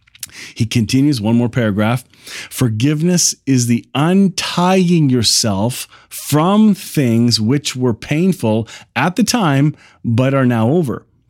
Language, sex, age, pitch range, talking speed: English, male, 30-49, 110-150 Hz, 115 wpm